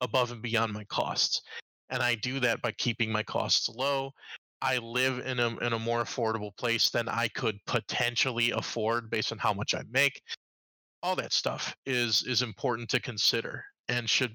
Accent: American